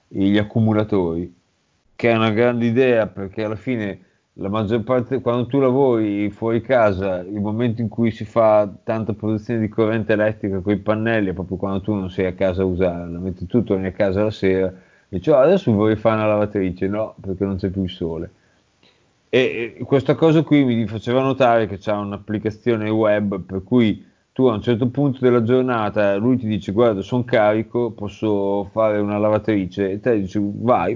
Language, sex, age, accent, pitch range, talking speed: Italian, male, 30-49, native, 100-115 Hz, 190 wpm